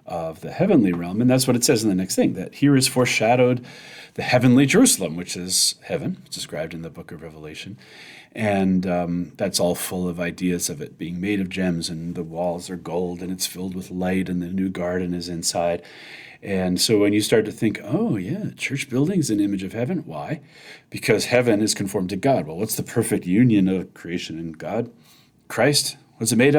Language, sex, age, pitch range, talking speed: English, male, 40-59, 95-145 Hz, 210 wpm